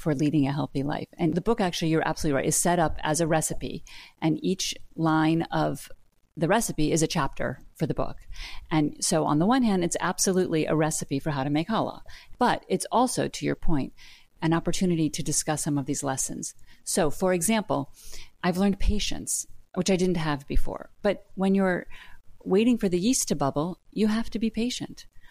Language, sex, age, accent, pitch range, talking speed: English, female, 40-59, American, 145-190 Hz, 200 wpm